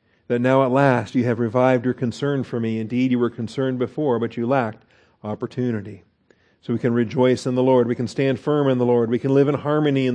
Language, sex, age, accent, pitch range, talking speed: English, male, 50-69, American, 120-150 Hz, 235 wpm